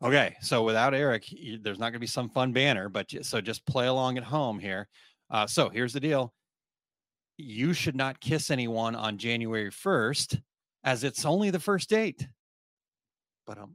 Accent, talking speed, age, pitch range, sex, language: American, 180 wpm, 30-49, 110-140 Hz, male, English